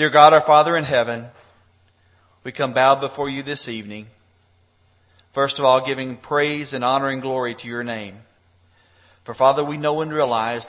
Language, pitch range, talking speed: English, 100-135 Hz, 175 wpm